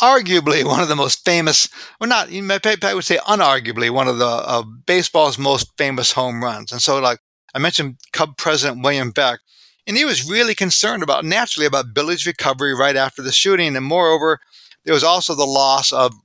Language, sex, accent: English, male, American